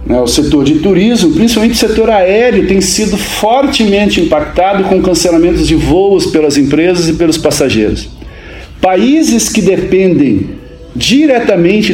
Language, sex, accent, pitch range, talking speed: Portuguese, male, Brazilian, 145-230 Hz, 125 wpm